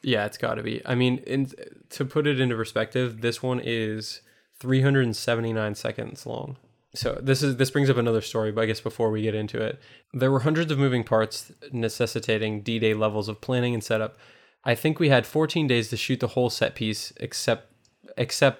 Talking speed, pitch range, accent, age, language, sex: 200 wpm, 110-130 Hz, American, 20-39, English, male